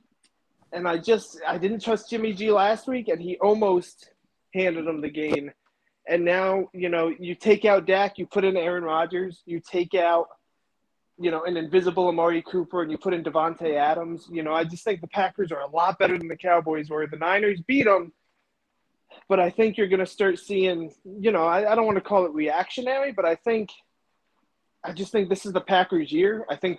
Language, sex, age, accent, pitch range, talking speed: English, male, 30-49, American, 170-220 Hz, 215 wpm